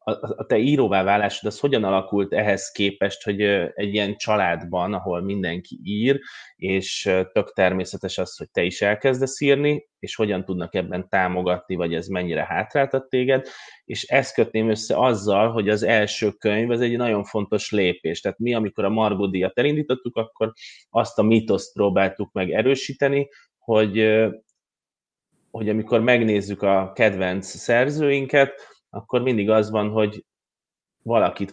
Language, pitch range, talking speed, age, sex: Hungarian, 95-120 Hz, 145 wpm, 20-39, male